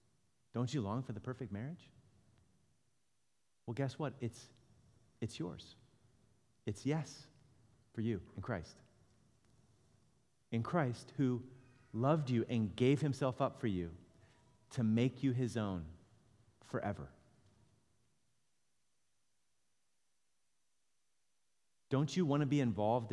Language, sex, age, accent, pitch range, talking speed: English, male, 40-59, American, 110-135 Hz, 110 wpm